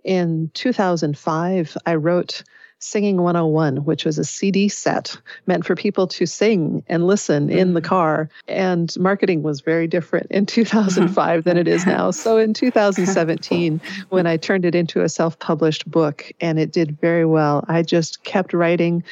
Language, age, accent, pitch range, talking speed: English, 40-59, American, 160-190 Hz, 165 wpm